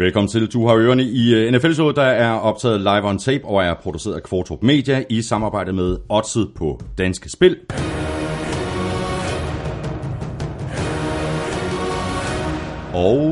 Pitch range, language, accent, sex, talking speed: 85-130 Hz, Danish, native, male, 125 wpm